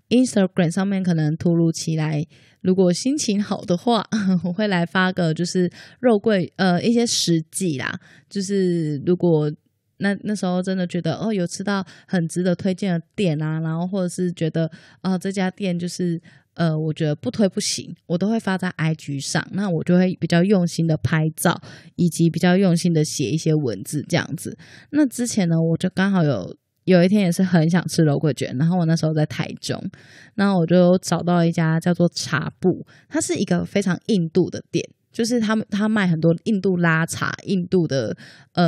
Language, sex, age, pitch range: Chinese, female, 20-39, 160-190 Hz